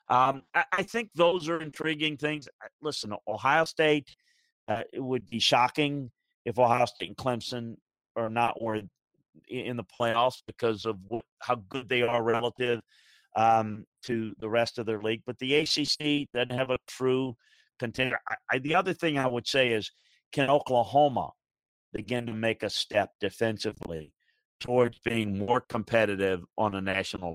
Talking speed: 160 wpm